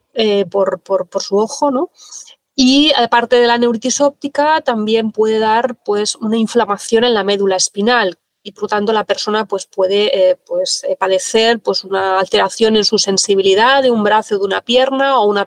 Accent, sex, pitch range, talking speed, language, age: Spanish, female, 205-255 Hz, 190 wpm, Spanish, 20-39